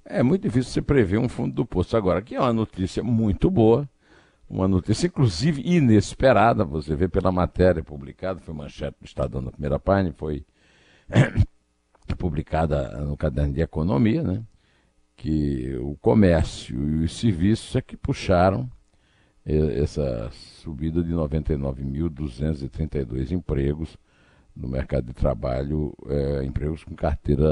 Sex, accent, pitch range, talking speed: male, Brazilian, 75-105 Hz, 135 wpm